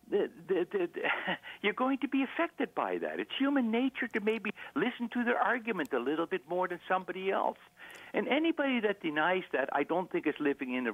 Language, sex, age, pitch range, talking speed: English, male, 60-79, 145-210 Hz, 215 wpm